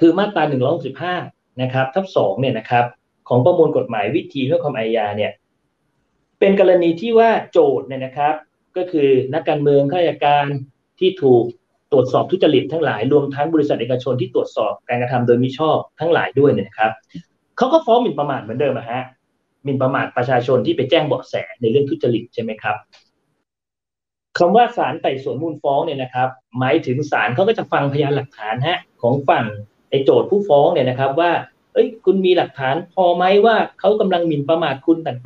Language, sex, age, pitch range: Thai, male, 30-49, 130-185 Hz